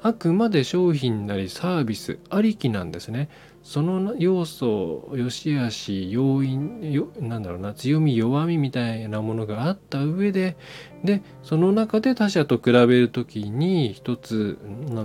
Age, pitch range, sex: 20-39, 110-155 Hz, male